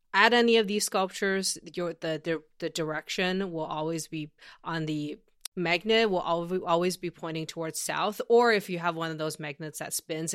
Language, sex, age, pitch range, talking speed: English, female, 20-39, 160-200 Hz, 185 wpm